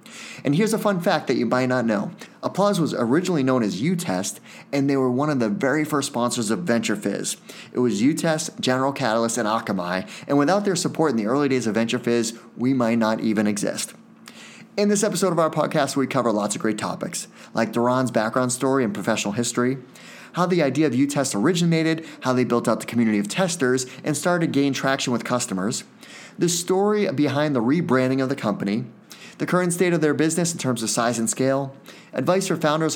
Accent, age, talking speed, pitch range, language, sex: American, 30-49, 205 wpm, 115-165 Hz, English, male